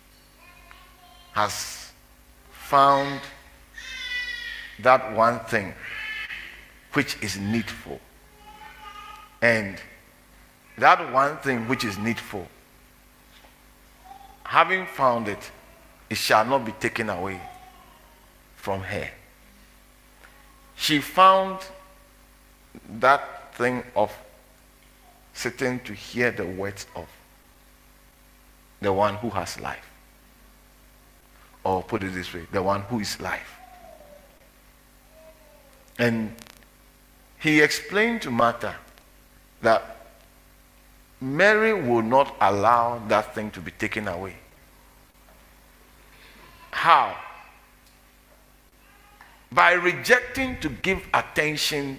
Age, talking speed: 50-69, 85 wpm